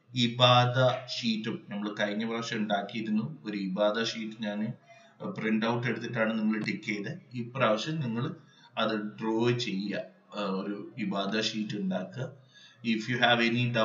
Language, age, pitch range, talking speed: Malayalam, 30-49, 110-130 Hz, 50 wpm